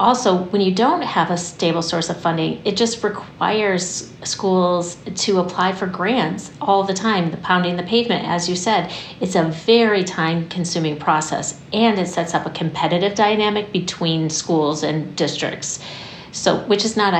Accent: American